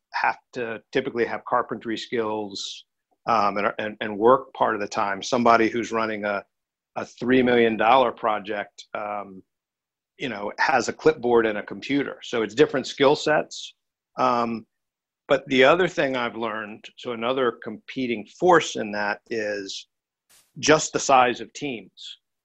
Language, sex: English, male